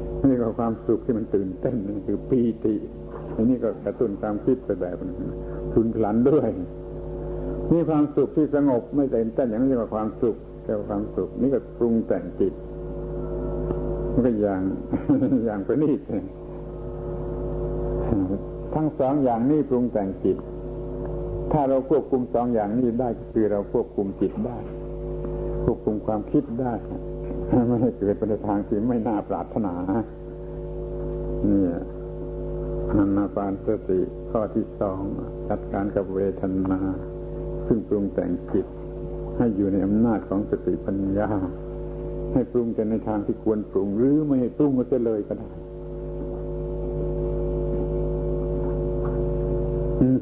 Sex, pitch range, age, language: male, 95-120 Hz, 70-89, Thai